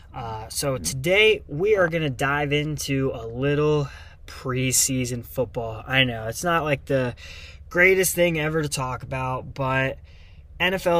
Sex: male